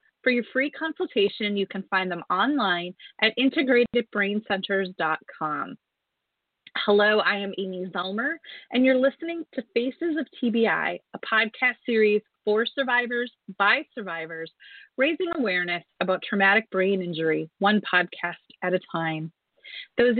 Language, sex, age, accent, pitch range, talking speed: English, female, 30-49, American, 185-250 Hz, 125 wpm